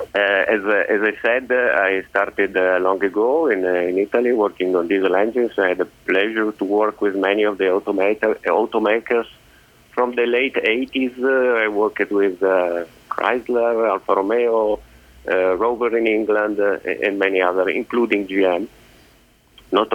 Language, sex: English, male